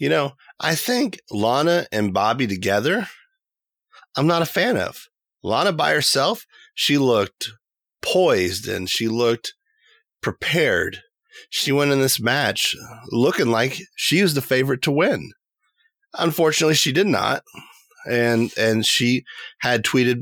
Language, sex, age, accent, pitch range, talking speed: English, male, 30-49, American, 110-155 Hz, 135 wpm